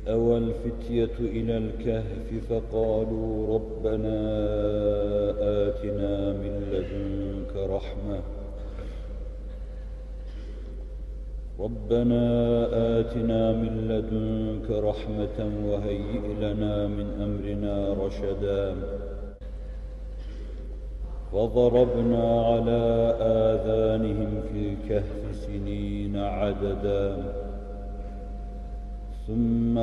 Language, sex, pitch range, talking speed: Turkish, male, 85-110 Hz, 55 wpm